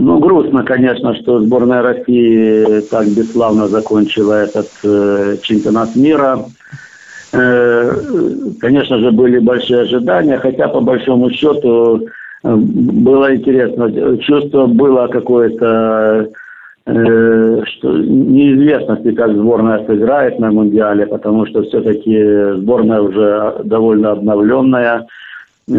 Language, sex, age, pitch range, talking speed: Russian, male, 50-69, 105-125 Hz, 100 wpm